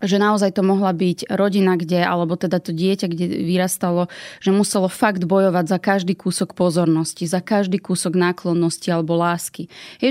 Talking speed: 165 wpm